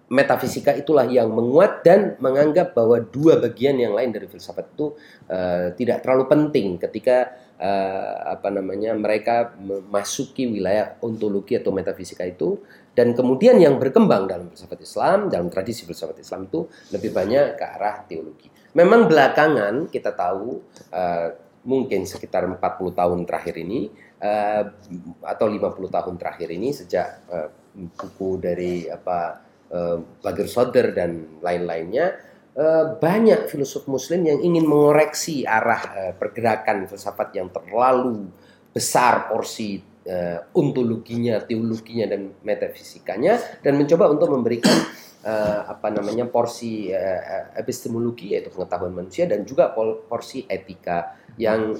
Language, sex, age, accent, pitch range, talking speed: Indonesian, male, 30-49, native, 95-130 Hz, 120 wpm